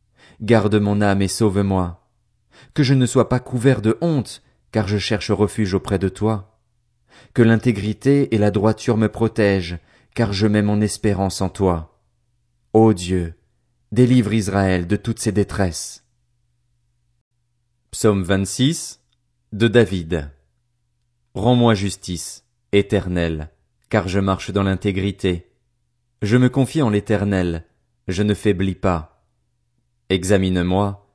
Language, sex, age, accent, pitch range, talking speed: French, male, 30-49, French, 100-120 Hz, 125 wpm